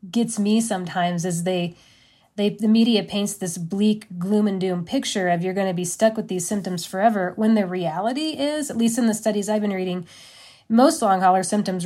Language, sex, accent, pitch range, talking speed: English, female, American, 180-225 Hz, 205 wpm